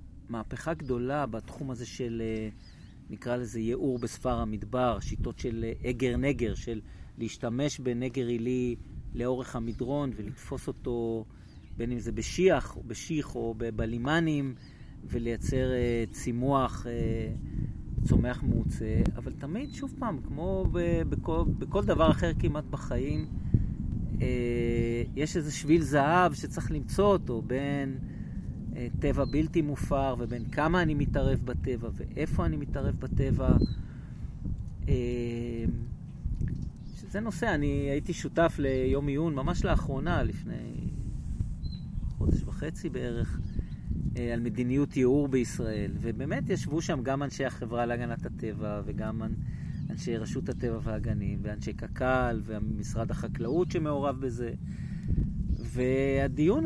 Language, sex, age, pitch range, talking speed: Hebrew, male, 40-59, 115-140 Hz, 110 wpm